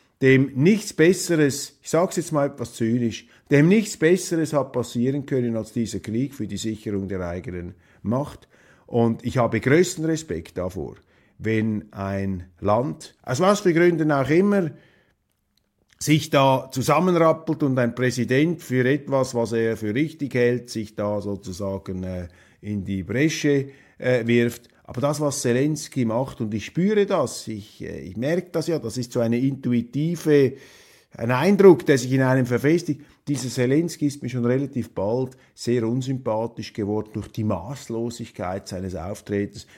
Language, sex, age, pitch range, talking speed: German, male, 50-69, 95-135 Hz, 150 wpm